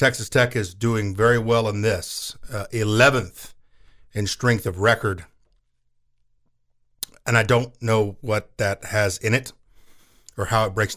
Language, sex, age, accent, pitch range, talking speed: English, male, 50-69, American, 100-135 Hz, 150 wpm